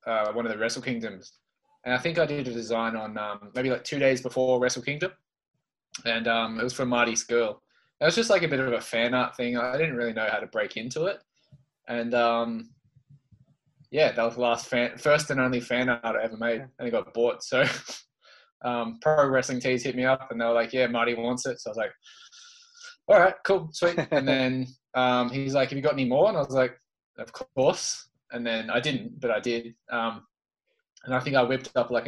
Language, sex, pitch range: English, male, 120-145 Hz